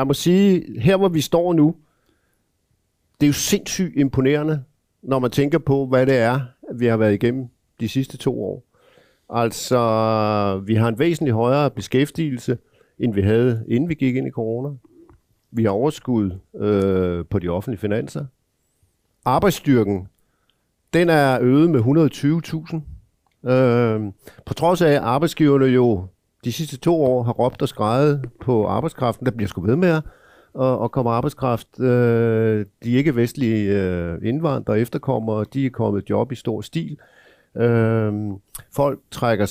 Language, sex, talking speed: Danish, male, 145 wpm